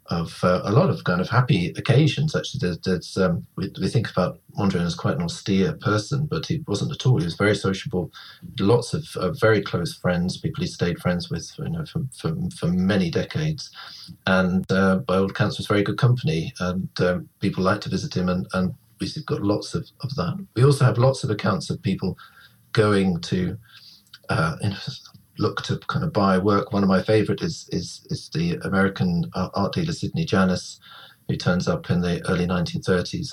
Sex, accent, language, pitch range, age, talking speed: male, British, English, 95-155 Hz, 40-59, 200 wpm